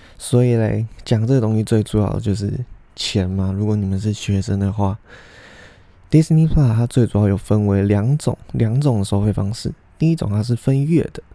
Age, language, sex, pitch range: 20-39, Chinese, male, 100-125 Hz